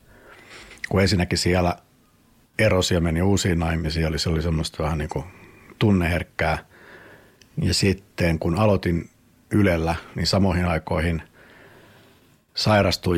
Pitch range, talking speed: 85-100 Hz, 100 wpm